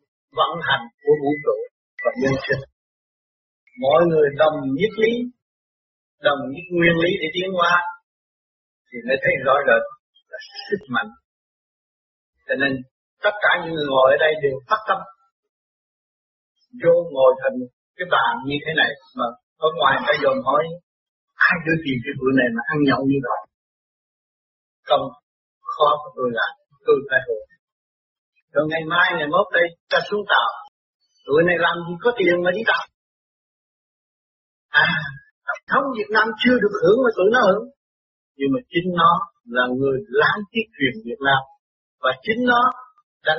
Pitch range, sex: 150-255 Hz, male